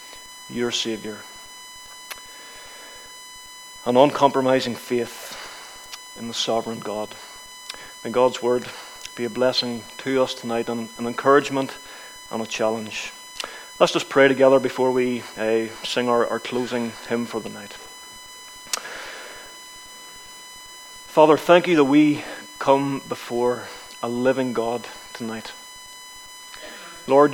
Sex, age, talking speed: male, 40-59, 110 wpm